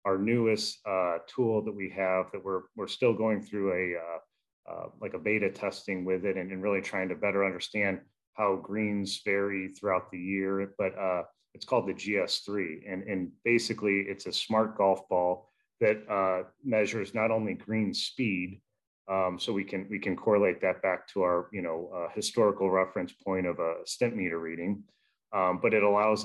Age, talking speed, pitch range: 30-49, 185 wpm, 95-110 Hz